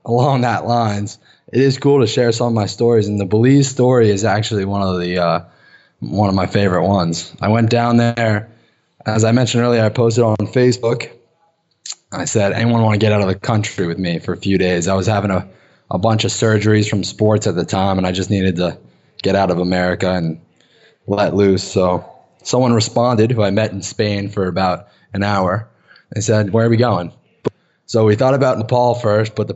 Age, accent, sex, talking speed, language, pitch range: 20-39, American, male, 215 wpm, English, 100-120 Hz